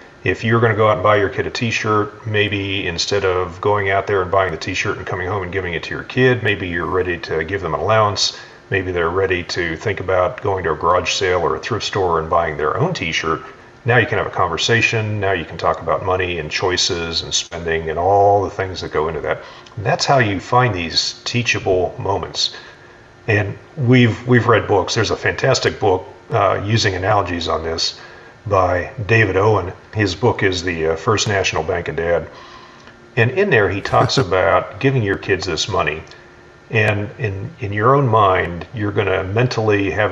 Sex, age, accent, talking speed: male, 40-59, American, 205 wpm